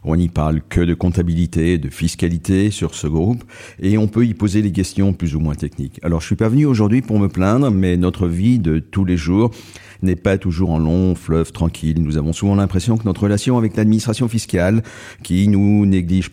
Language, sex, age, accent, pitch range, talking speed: French, male, 50-69, French, 85-105 Hz, 210 wpm